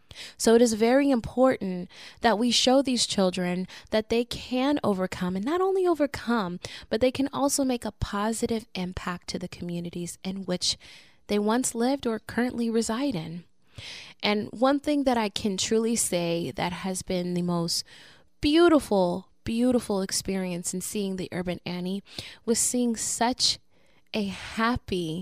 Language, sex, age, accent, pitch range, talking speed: English, female, 10-29, American, 185-245 Hz, 150 wpm